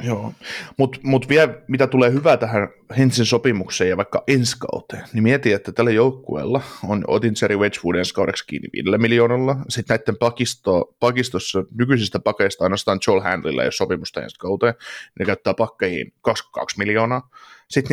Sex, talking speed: male, 145 wpm